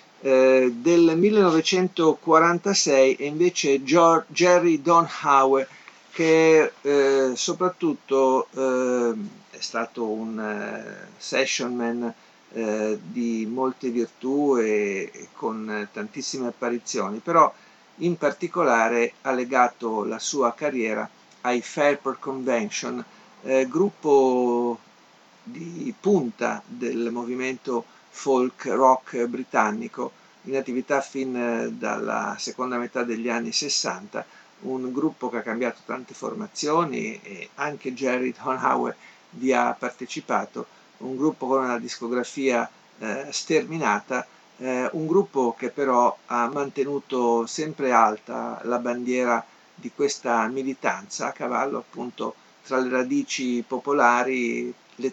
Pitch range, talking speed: 120-145 Hz, 110 wpm